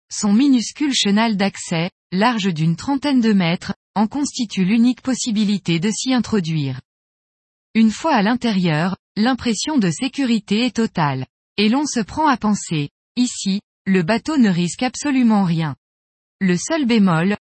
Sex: female